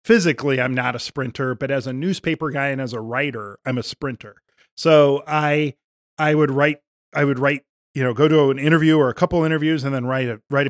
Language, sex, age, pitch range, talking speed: English, male, 40-59, 130-155 Hz, 225 wpm